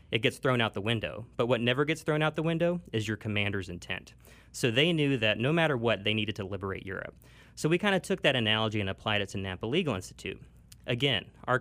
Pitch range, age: 105-135 Hz, 30-49